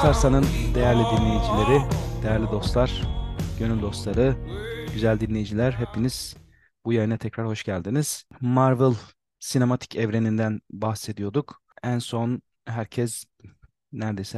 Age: 40-59